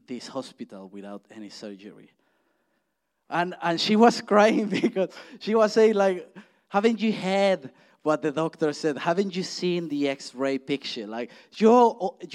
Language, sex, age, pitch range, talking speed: English, male, 30-49, 125-195 Hz, 145 wpm